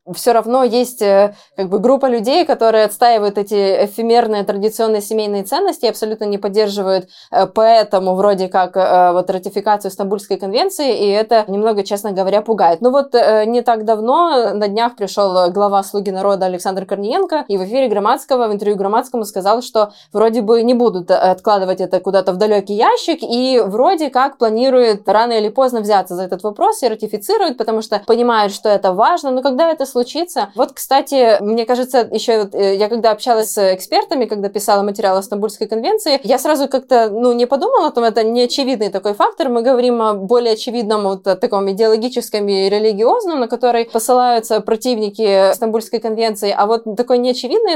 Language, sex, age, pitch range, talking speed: Russian, female, 20-39, 205-245 Hz, 165 wpm